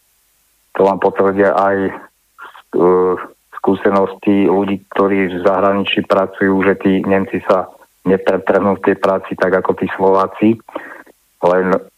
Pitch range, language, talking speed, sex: 95-100 Hz, Slovak, 115 wpm, male